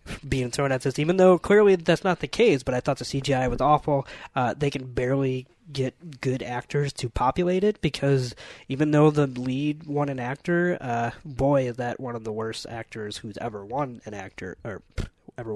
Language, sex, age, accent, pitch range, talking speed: English, male, 20-39, American, 125-155 Hz, 200 wpm